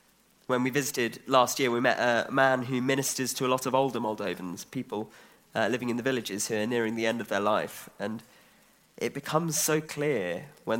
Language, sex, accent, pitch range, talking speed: English, male, British, 115-140 Hz, 200 wpm